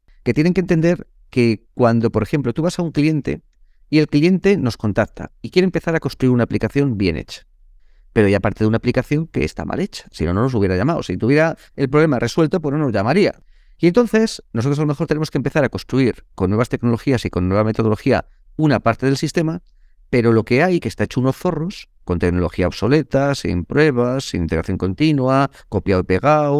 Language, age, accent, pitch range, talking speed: Spanish, 40-59, Spanish, 110-155 Hz, 210 wpm